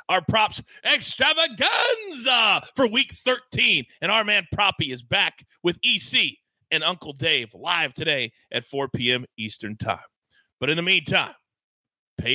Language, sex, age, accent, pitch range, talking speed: English, male, 40-59, American, 145-200 Hz, 140 wpm